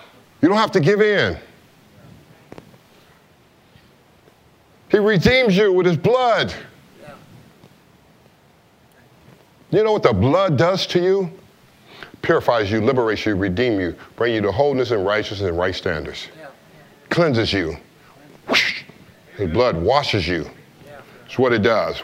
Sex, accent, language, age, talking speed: male, American, English, 50-69, 125 wpm